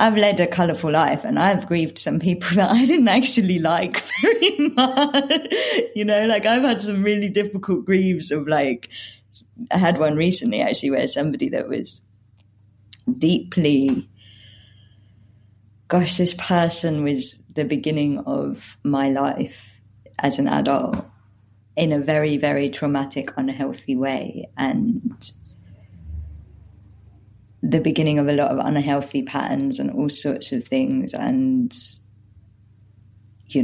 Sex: female